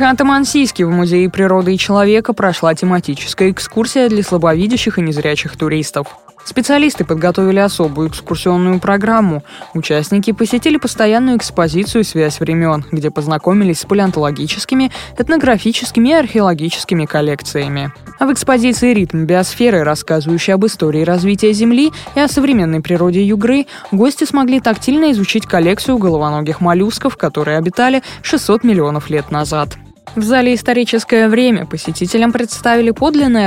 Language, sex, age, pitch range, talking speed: Russian, female, 20-39, 165-230 Hz, 120 wpm